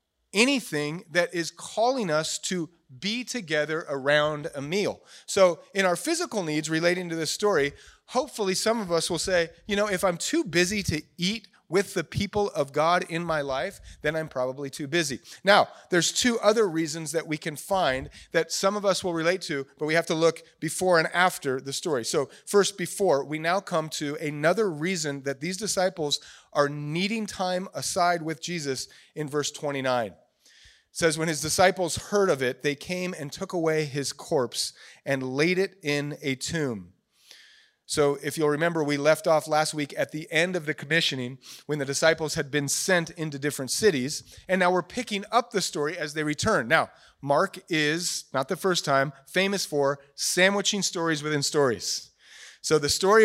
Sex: male